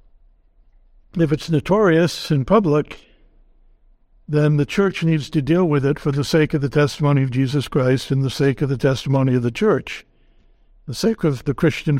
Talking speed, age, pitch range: 180 wpm, 60-79, 135-160 Hz